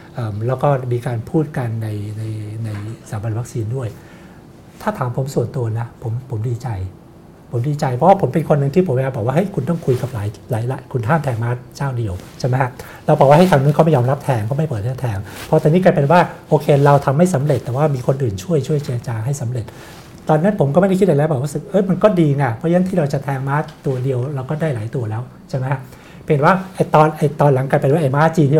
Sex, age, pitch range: male, 60-79, 120-150 Hz